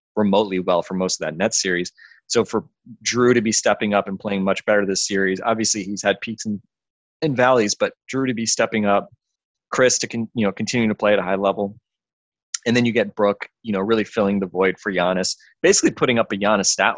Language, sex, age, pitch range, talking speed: English, male, 20-39, 95-110 Hz, 225 wpm